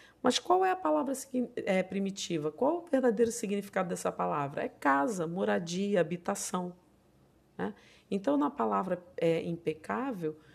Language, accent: Portuguese, Brazilian